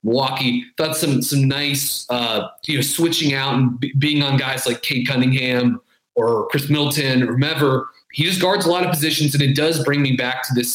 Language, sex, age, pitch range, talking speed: English, male, 30-49, 125-150 Hz, 205 wpm